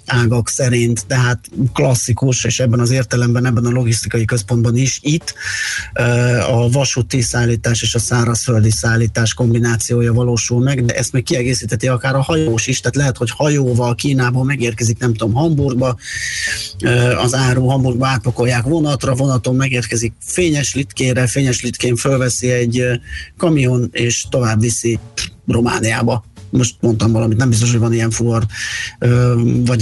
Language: Hungarian